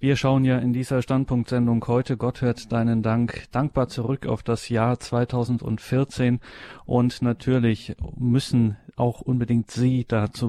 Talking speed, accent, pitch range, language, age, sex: 145 wpm, German, 115-125 Hz, German, 40-59, male